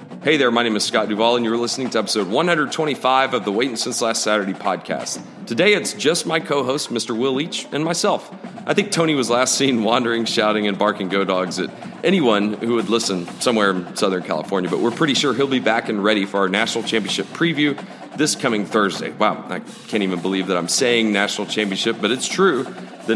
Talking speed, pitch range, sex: 215 wpm, 105-125 Hz, male